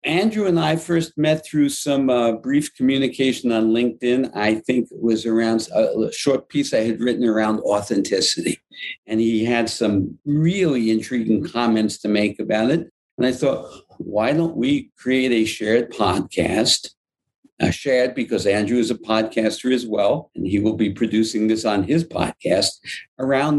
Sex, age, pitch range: male, 60-79, 110-150 Hz